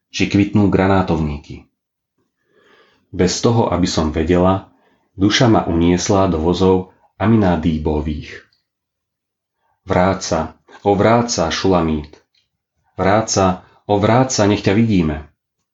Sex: male